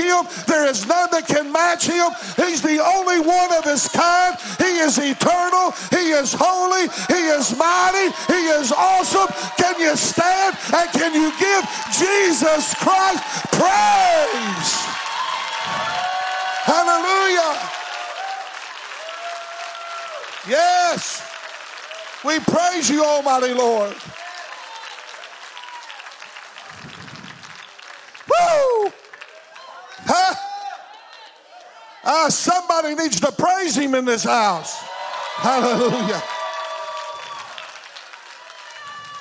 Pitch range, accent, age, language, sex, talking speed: 300-365 Hz, American, 50-69, English, male, 85 wpm